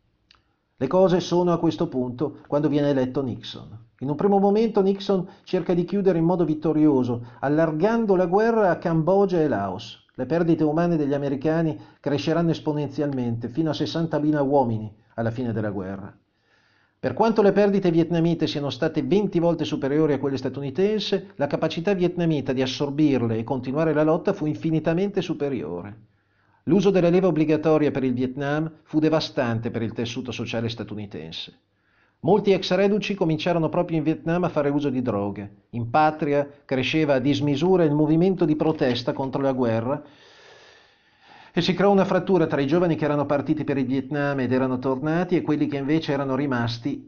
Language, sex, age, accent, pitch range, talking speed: Italian, male, 50-69, native, 130-170 Hz, 165 wpm